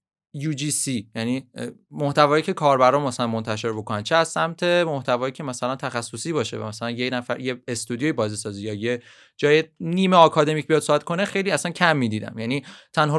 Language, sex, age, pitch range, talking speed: Persian, male, 30-49, 125-185 Hz, 165 wpm